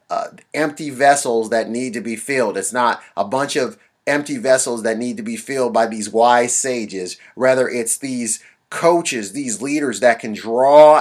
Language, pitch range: English, 115-150 Hz